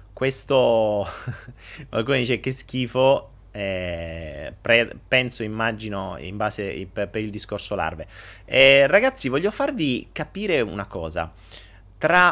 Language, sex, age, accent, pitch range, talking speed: Italian, male, 30-49, native, 95-150 Hz, 110 wpm